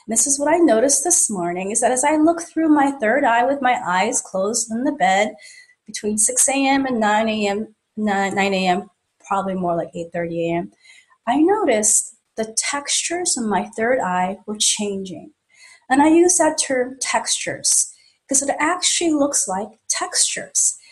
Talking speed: 170 wpm